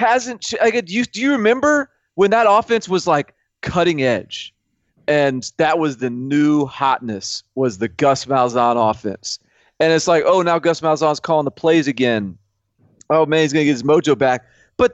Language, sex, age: English, male, 30-49